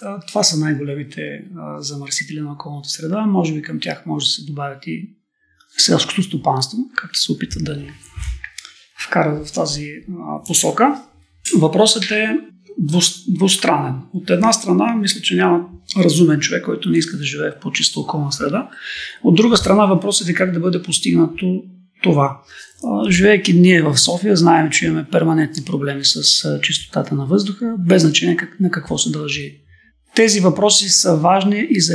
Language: Bulgarian